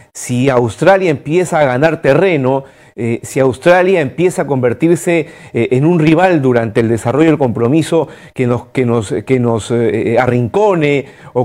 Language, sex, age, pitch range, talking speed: Spanish, male, 40-59, 130-170 Hz, 155 wpm